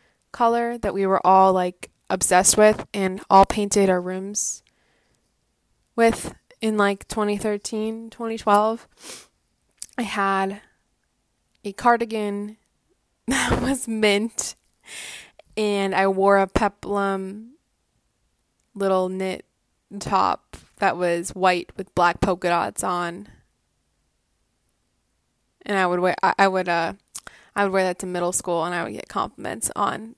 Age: 20-39